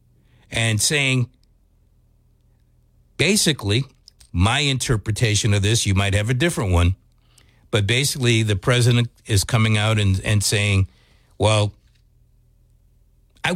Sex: male